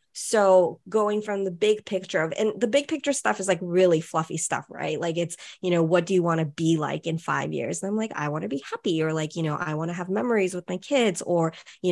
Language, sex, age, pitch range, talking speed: English, female, 20-39, 160-195 Hz, 270 wpm